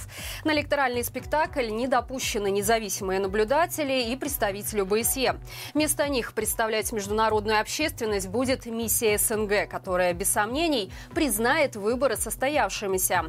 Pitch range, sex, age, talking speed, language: 210-275 Hz, female, 20-39, 110 wpm, Russian